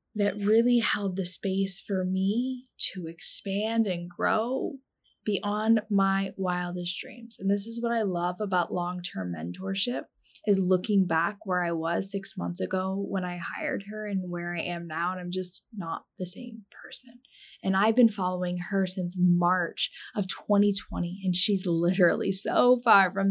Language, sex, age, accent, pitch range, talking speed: English, female, 10-29, American, 180-225 Hz, 165 wpm